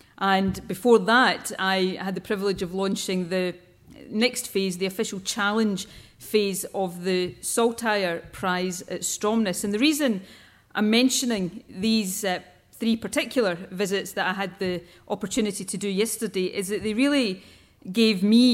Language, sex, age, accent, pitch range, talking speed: English, female, 40-59, British, 185-220 Hz, 150 wpm